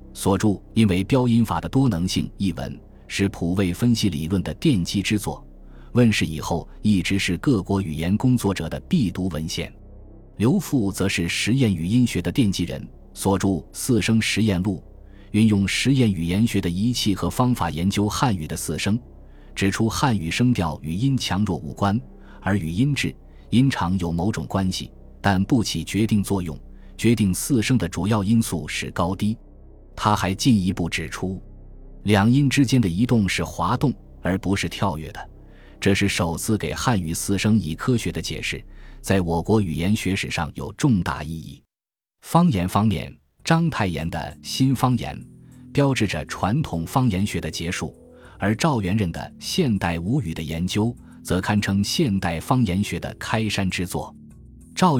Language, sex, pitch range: Chinese, male, 85-110 Hz